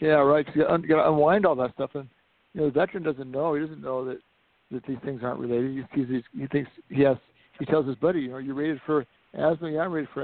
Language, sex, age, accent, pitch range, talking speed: English, male, 60-79, American, 130-155 Hz, 280 wpm